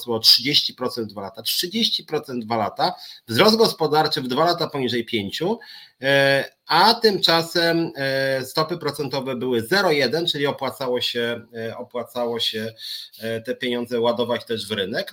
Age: 30-49